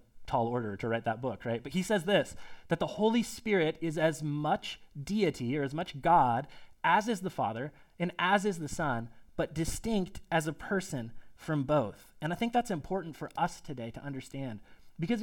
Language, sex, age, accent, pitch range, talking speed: English, male, 30-49, American, 140-180 Hz, 195 wpm